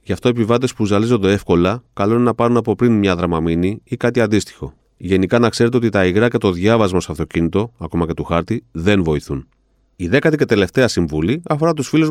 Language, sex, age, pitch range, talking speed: Greek, male, 30-49, 100-130 Hz, 215 wpm